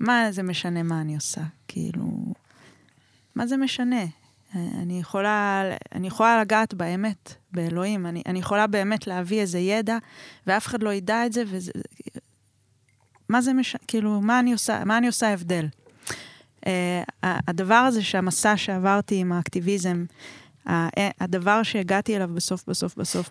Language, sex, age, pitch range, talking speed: Hebrew, female, 20-39, 175-215 Hz, 135 wpm